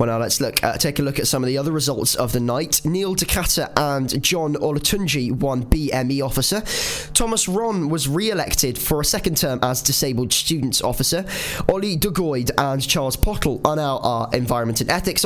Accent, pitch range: British, 130-175 Hz